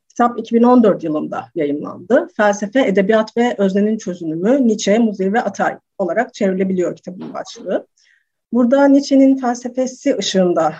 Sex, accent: female, native